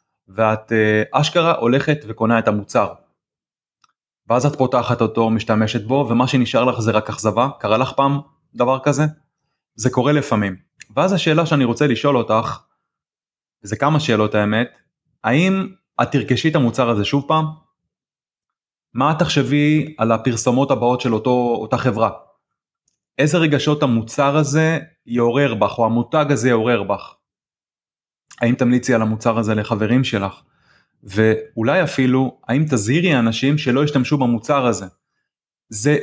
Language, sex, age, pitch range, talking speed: Hebrew, male, 20-39, 115-145 Hz, 135 wpm